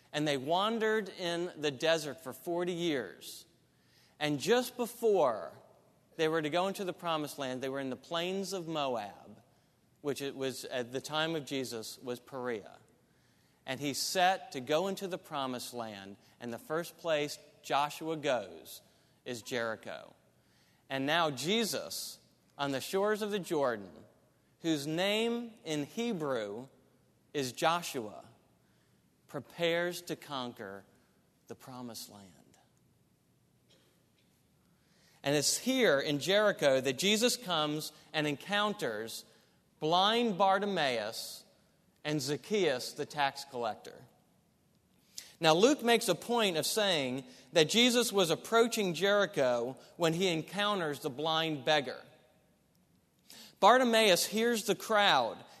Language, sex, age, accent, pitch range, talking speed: English, male, 40-59, American, 135-195 Hz, 125 wpm